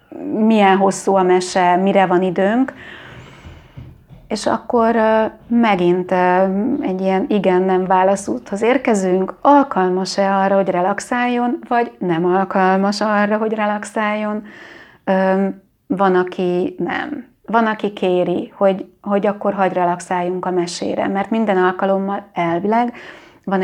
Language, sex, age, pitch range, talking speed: Hungarian, female, 30-49, 180-205 Hz, 110 wpm